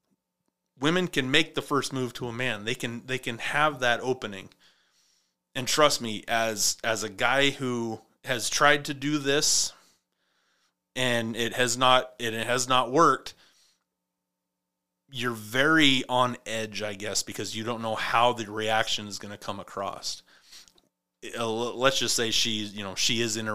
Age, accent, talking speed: 30-49, American, 165 wpm